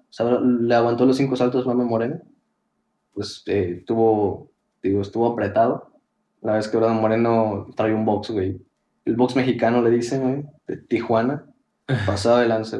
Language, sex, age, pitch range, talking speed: Spanish, male, 20-39, 110-130 Hz, 155 wpm